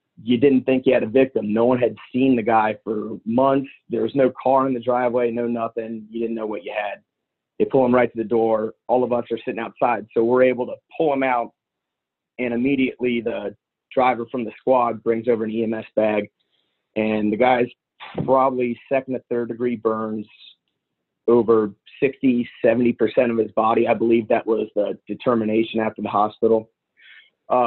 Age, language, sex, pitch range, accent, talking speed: 30-49, English, male, 110-125 Hz, American, 190 wpm